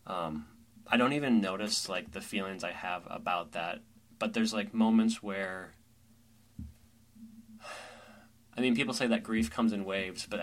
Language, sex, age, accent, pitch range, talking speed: English, male, 10-29, American, 100-115 Hz, 155 wpm